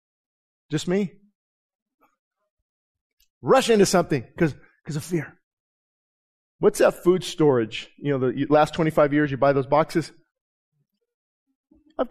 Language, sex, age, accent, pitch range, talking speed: English, male, 40-59, American, 150-205 Hz, 125 wpm